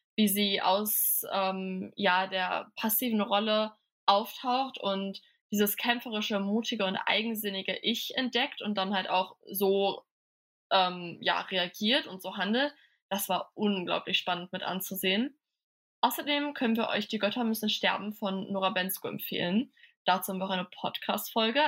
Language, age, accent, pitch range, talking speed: German, 20-39, German, 195-235 Hz, 145 wpm